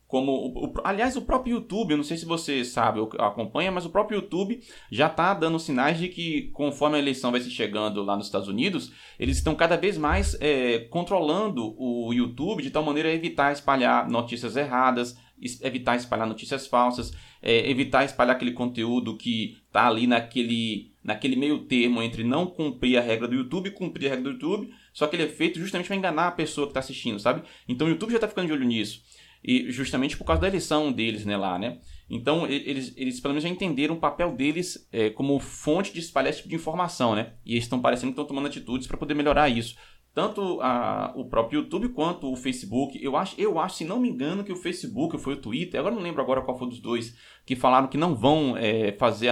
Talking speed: 220 wpm